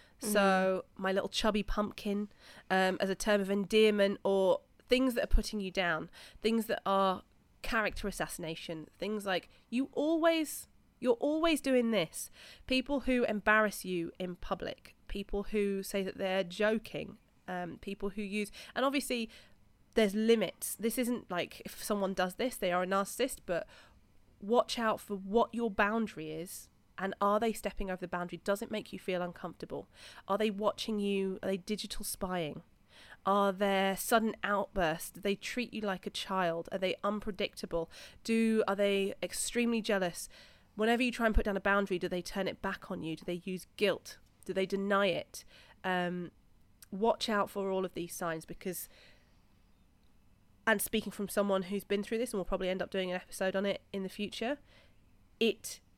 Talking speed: 175 wpm